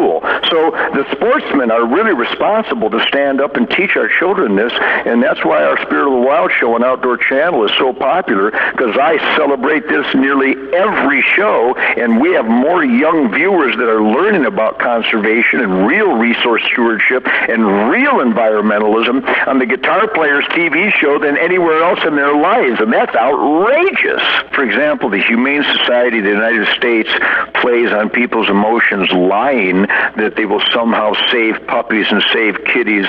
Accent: American